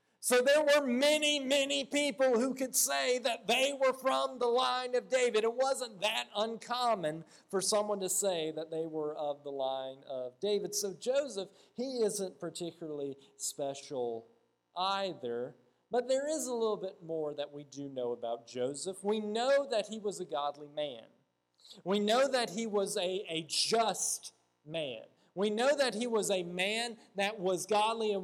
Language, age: English, 40-59